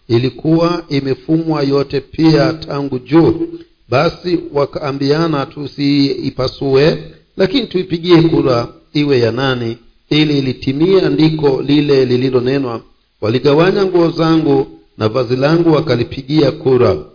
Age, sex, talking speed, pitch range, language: 50-69, male, 100 wpm, 125-165 Hz, Swahili